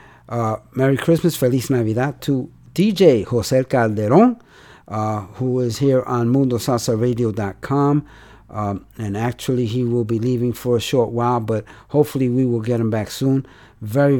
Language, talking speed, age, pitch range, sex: English, 150 wpm, 50-69, 115-145 Hz, male